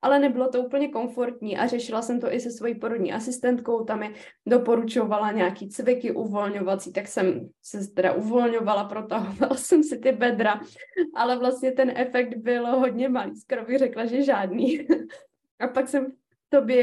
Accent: native